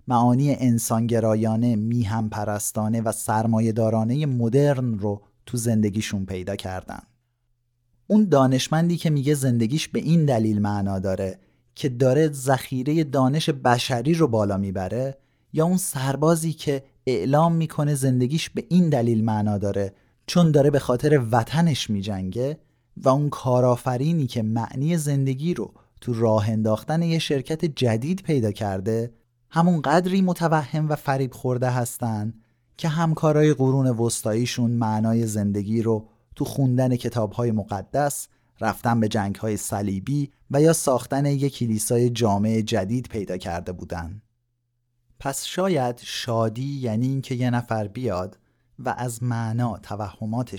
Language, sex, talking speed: Persian, male, 130 wpm